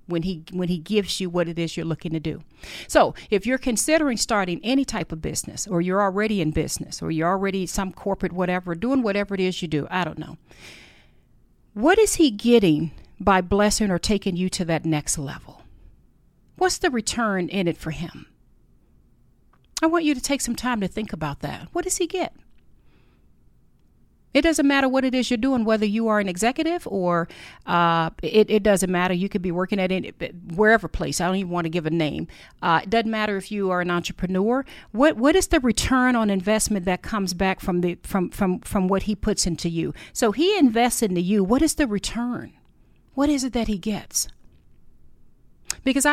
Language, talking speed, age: English, 205 wpm, 40-59